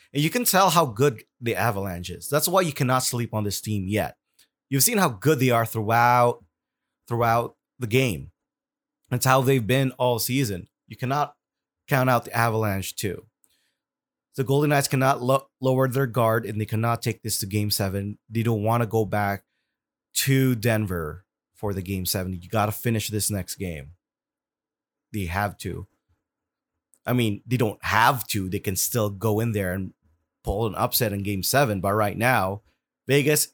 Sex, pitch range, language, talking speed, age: male, 105-130 Hz, English, 180 wpm, 30-49